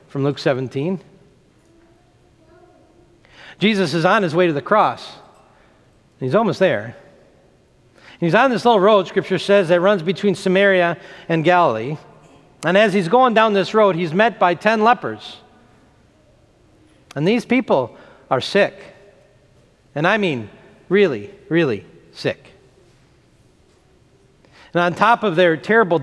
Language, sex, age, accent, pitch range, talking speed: English, male, 40-59, American, 155-215 Hz, 130 wpm